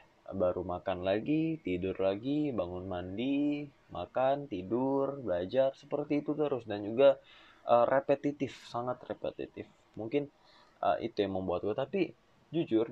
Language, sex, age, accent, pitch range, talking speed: Indonesian, male, 20-39, native, 95-135 Hz, 120 wpm